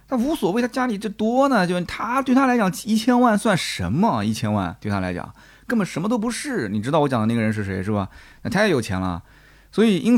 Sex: male